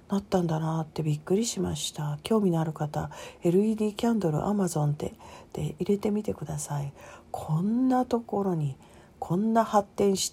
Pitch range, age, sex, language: 150-205 Hz, 40-59, female, Japanese